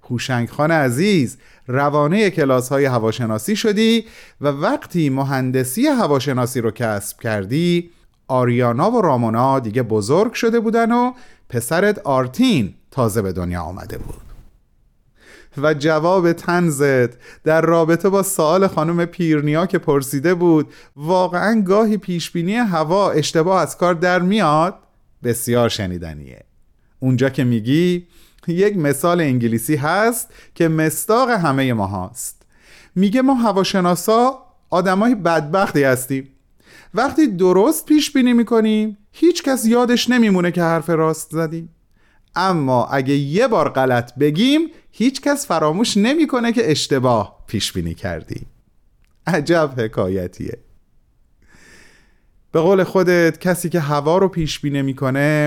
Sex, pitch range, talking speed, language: male, 120-185 Hz, 115 wpm, Persian